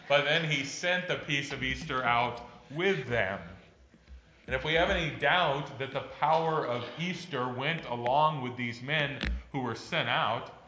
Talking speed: 175 wpm